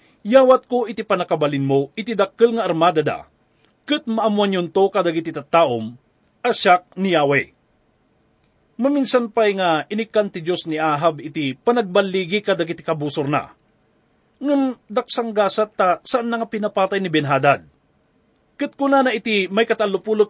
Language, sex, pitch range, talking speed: English, male, 170-235 Hz, 135 wpm